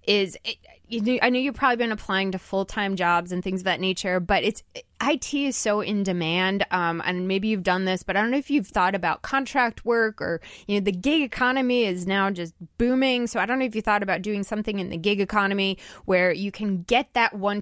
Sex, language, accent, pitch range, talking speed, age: female, English, American, 185-230 Hz, 240 wpm, 20-39